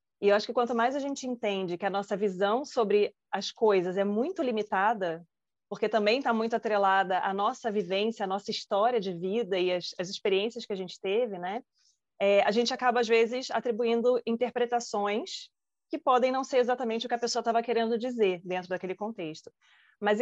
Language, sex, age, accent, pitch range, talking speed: Portuguese, female, 20-39, Brazilian, 195-240 Hz, 195 wpm